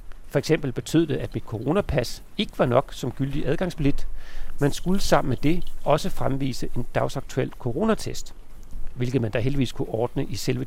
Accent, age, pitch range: native, 40-59, 120-155 Hz